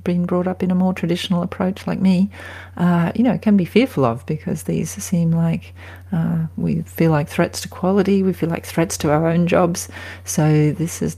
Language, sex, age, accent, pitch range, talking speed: English, female, 40-59, Australian, 135-175 Hz, 210 wpm